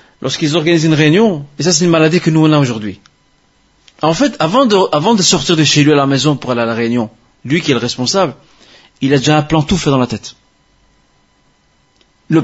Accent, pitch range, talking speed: French, 125-180 Hz, 230 wpm